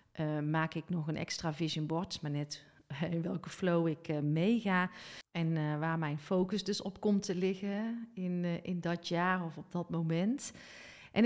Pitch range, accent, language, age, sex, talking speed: 170-210 Hz, Dutch, Dutch, 40-59, female, 190 wpm